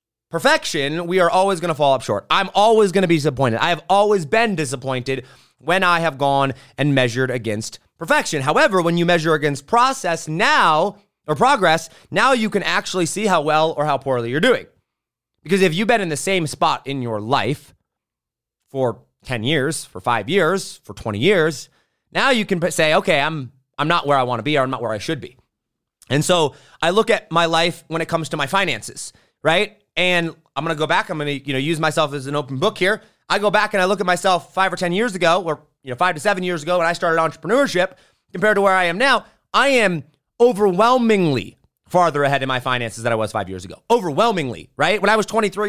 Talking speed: 220 wpm